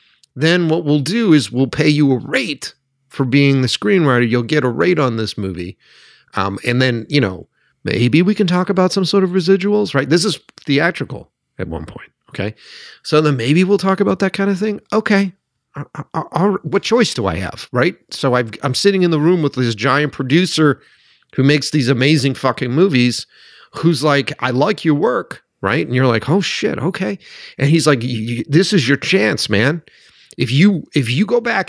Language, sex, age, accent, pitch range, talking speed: English, male, 40-59, American, 130-190 Hz, 195 wpm